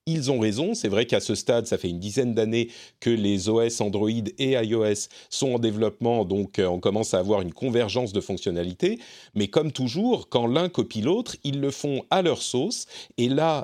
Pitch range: 110-160 Hz